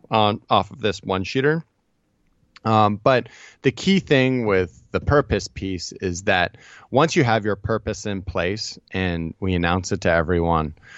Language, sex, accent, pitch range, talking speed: English, male, American, 85-105 Hz, 165 wpm